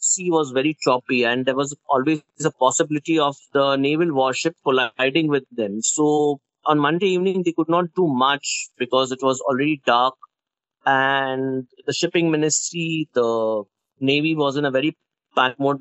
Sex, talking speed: male, 165 wpm